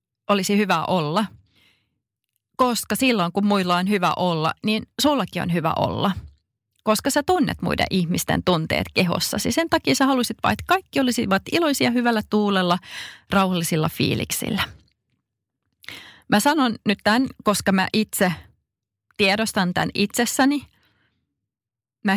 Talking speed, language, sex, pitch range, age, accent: 125 wpm, Finnish, female, 130-215 Hz, 30-49, native